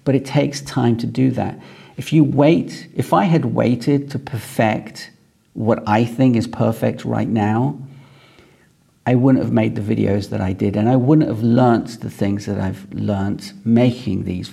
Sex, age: male, 50-69